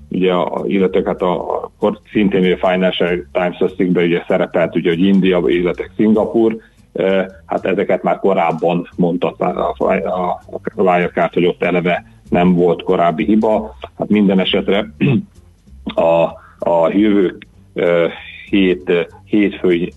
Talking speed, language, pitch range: 130 wpm, Hungarian, 85-100 Hz